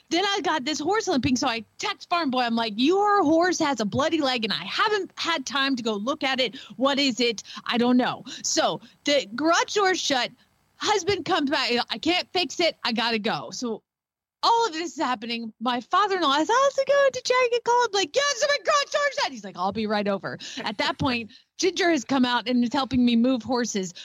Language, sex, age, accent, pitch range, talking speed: English, female, 30-49, American, 220-330 Hz, 230 wpm